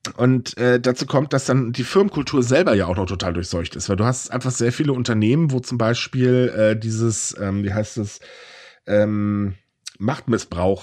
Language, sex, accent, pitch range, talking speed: German, male, German, 115-145 Hz, 185 wpm